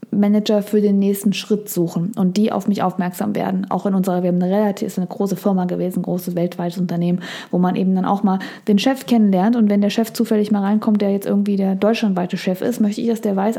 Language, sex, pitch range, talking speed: German, female, 195-230 Hz, 245 wpm